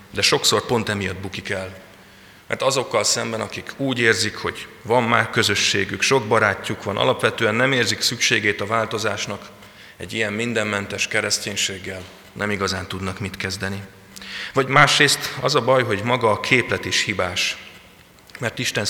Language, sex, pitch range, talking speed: Hungarian, male, 95-115 Hz, 150 wpm